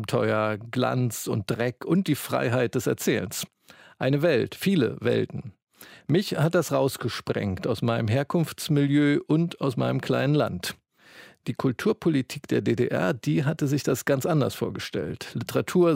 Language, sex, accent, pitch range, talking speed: German, male, German, 120-155 Hz, 140 wpm